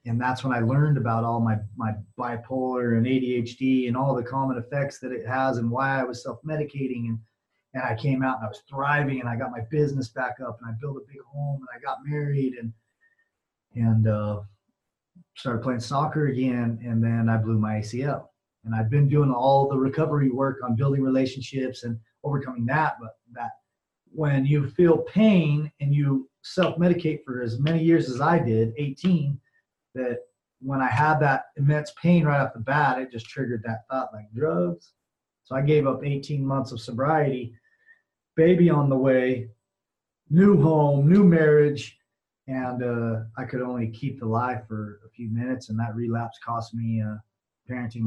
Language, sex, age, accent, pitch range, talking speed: English, male, 30-49, American, 115-140 Hz, 185 wpm